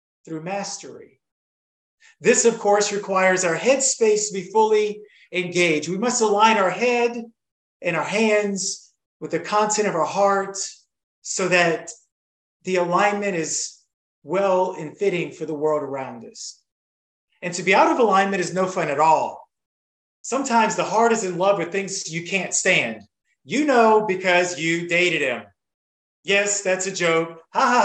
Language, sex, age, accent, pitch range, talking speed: English, male, 30-49, American, 160-210 Hz, 155 wpm